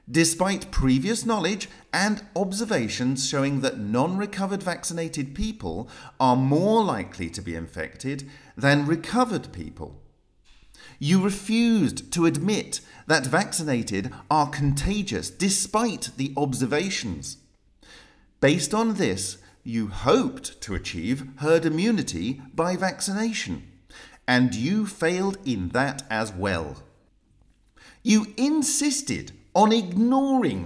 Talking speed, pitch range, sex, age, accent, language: 100 wpm, 130-210 Hz, male, 40-59, British, English